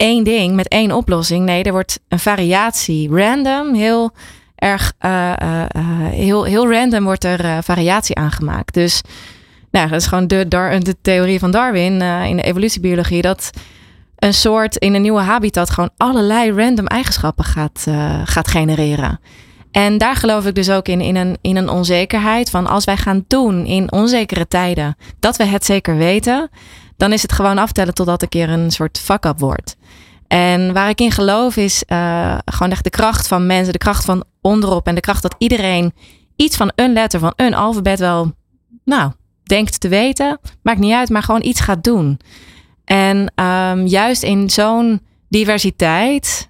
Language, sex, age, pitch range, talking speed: Dutch, female, 20-39, 170-210 Hz, 180 wpm